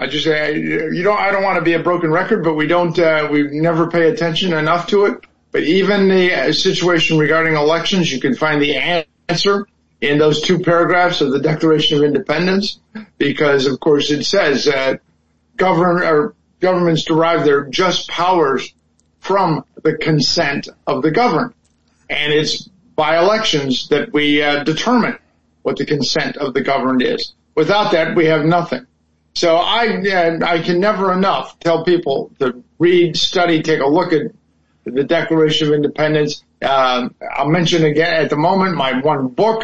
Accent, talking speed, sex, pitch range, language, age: American, 170 wpm, male, 150-185 Hz, English, 50-69